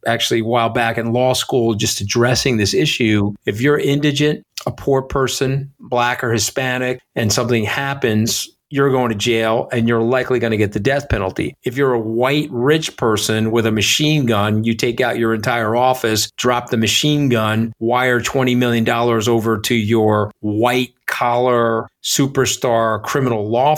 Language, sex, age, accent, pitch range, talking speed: English, male, 50-69, American, 110-125 Hz, 170 wpm